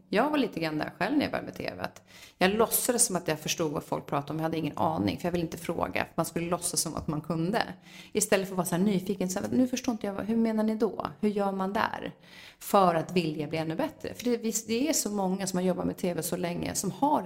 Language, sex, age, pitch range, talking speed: Swedish, female, 30-49, 170-225 Hz, 265 wpm